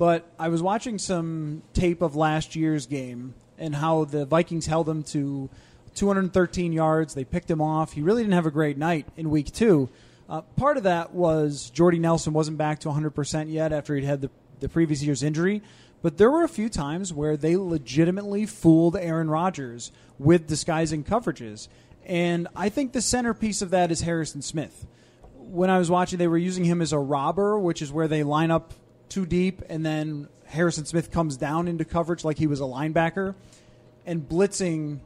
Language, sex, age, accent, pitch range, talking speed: English, male, 30-49, American, 150-180 Hz, 190 wpm